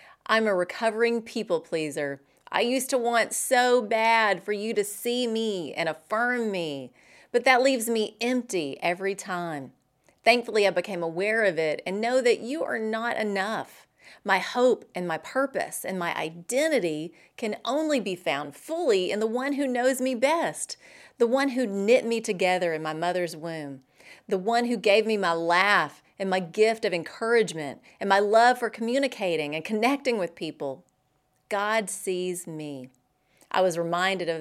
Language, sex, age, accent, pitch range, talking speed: English, female, 30-49, American, 180-245 Hz, 170 wpm